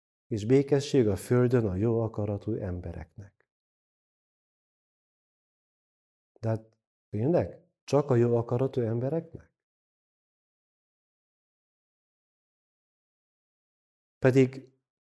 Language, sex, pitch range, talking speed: Hungarian, male, 110-135 Hz, 70 wpm